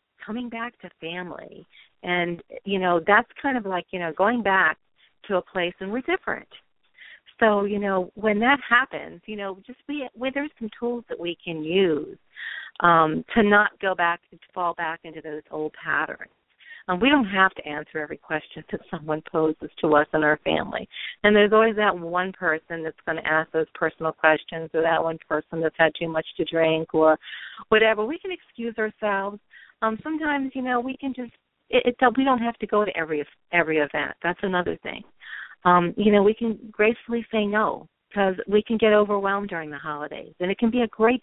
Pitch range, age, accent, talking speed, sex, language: 165-220 Hz, 40-59, American, 200 wpm, female, English